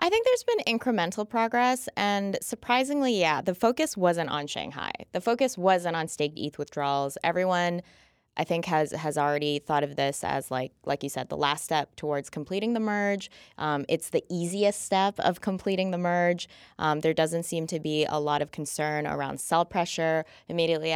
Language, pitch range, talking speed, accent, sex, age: English, 145-185 Hz, 185 wpm, American, female, 20-39